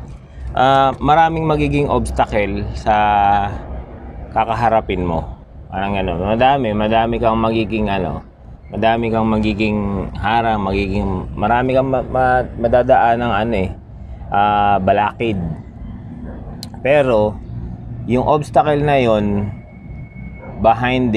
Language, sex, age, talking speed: Filipino, male, 20-39, 95 wpm